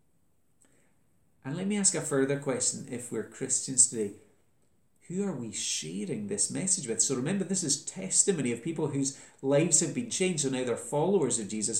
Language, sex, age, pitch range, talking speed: English, male, 30-49, 115-150 Hz, 185 wpm